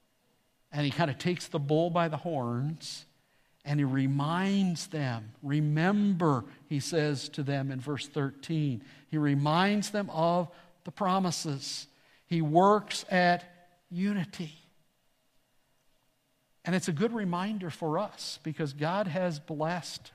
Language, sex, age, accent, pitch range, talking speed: English, male, 60-79, American, 140-180 Hz, 130 wpm